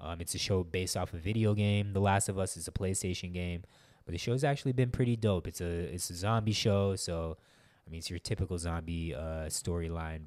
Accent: American